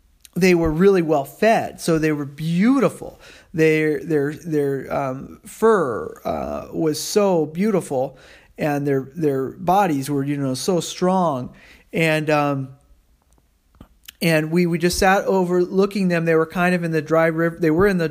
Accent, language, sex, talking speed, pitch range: American, English, male, 160 wpm, 145-180 Hz